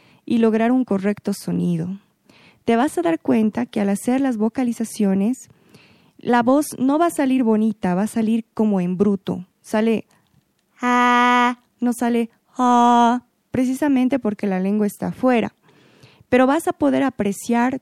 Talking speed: 140 wpm